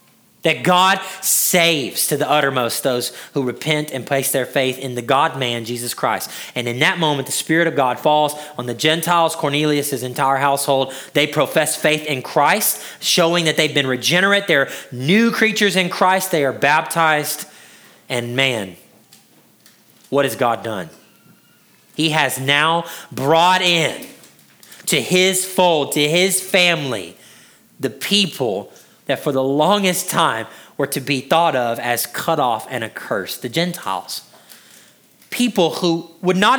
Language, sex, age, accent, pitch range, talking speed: English, male, 30-49, American, 140-195 Hz, 150 wpm